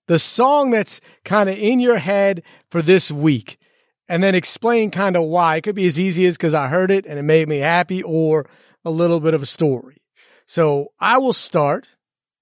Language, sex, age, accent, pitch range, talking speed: English, male, 30-49, American, 160-210 Hz, 210 wpm